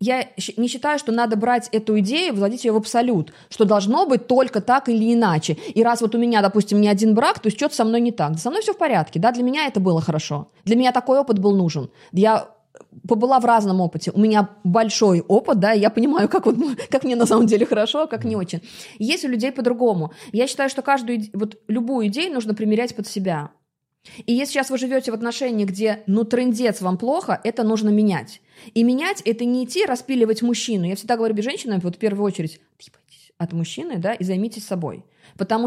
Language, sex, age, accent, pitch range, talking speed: Russian, female, 20-39, native, 195-245 Hz, 215 wpm